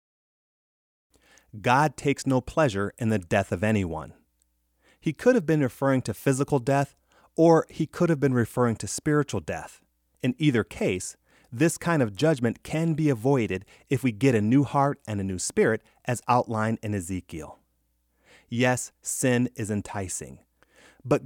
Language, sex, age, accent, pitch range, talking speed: English, male, 30-49, American, 100-145 Hz, 155 wpm